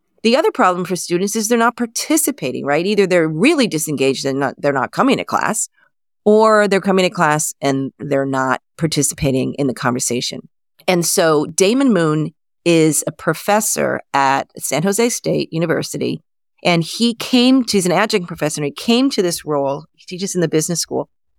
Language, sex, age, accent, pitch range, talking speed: English, female, 40-59, American, 145-190 Hz, 180 wpm